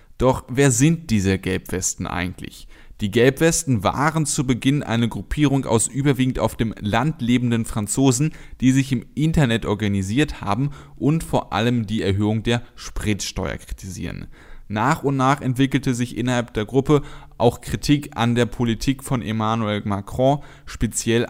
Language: German